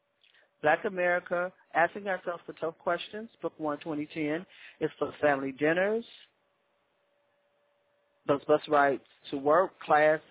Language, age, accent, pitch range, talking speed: English, 40-59, American, 150-180 Hz, 115 wpm